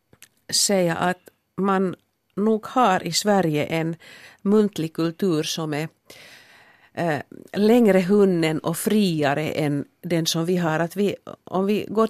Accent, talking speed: native, 135 wpm